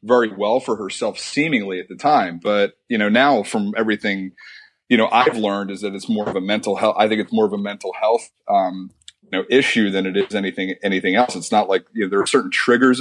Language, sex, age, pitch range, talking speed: English, male, 30-49, 105-130 Hz, 245 wpm